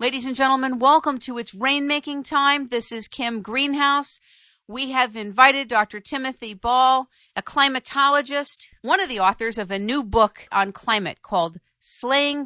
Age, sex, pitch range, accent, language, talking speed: 50-69, female, 220-265 Hz, American, English, 155 wpm